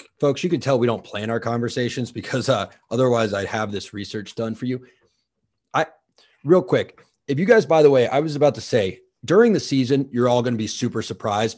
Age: 30-49